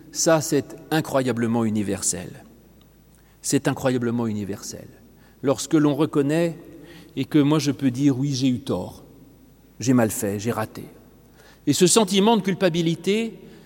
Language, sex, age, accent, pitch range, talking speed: French, male, 40-59, French, 135-195 Hz, 130 wpm